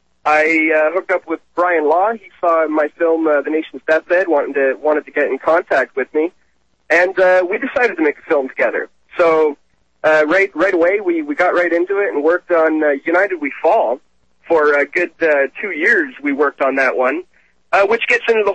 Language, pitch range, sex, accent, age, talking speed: English, 145-185 Hz, male, American, 30-49, 215 wpm